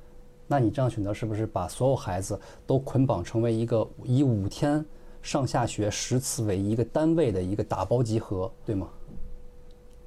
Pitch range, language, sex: 95-125 Hz, Chinese, male